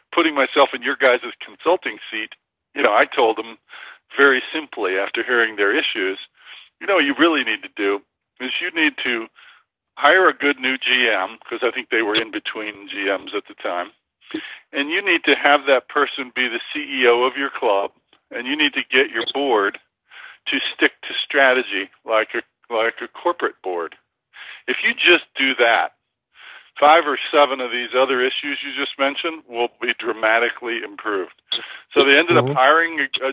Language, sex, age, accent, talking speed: English, male, 50-69, American, 180 wpm